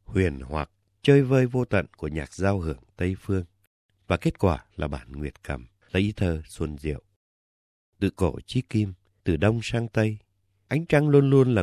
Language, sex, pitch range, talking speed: Vietnamese, male, 90-115 Hz, 190 wpm